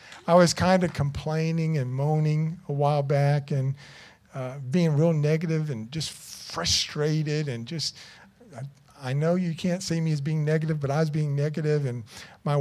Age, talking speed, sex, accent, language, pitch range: 50-69, 175 wpm, male, American, English, 140-175 Hz